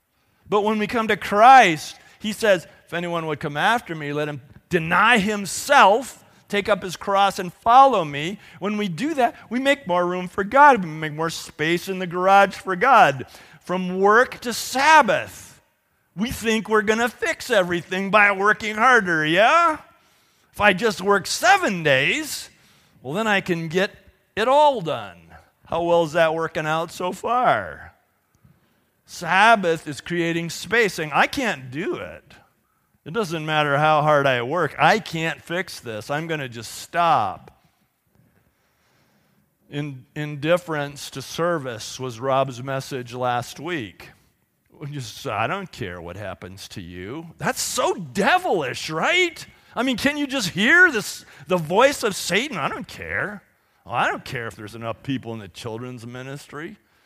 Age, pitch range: 40-59, 145-215 Hz